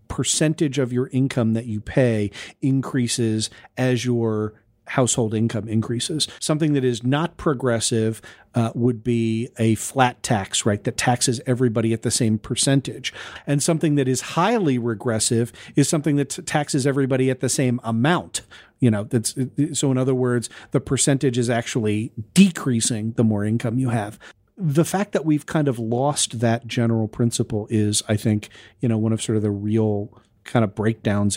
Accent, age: American, 40-59